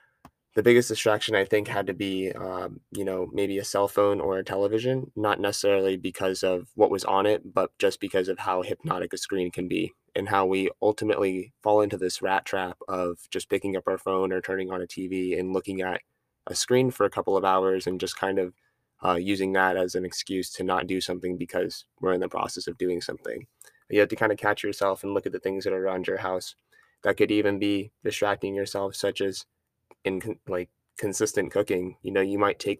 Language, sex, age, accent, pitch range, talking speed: English, male, 20-39, American, 95-105 Hz, 225 wpm